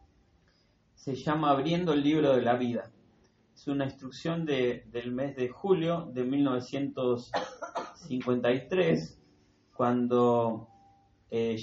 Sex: male